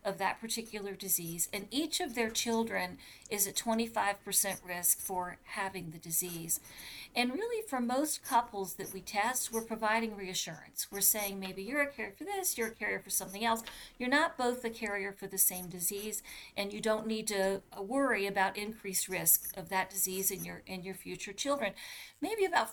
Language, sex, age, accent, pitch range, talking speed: English, female, 40-59, American, 195-230 Hz, 190 wpm